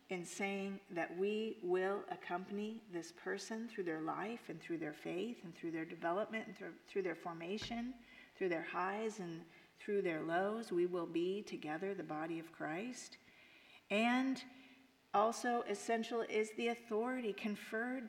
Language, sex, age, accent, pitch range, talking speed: English, female, 40-59, American, 180-225 Hz, 155 wpm